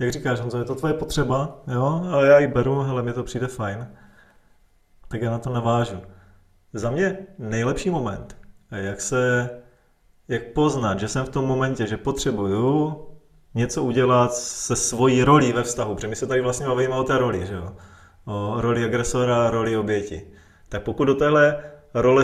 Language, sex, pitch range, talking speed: Czech, male, 110-140 Hz, 170 wpm